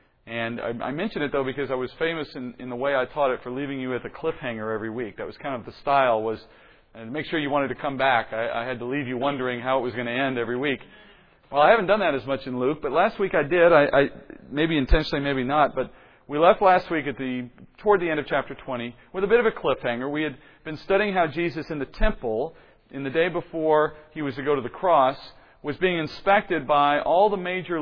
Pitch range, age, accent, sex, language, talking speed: 130-160 Hz, 40-59, American, male, English, 260 wpm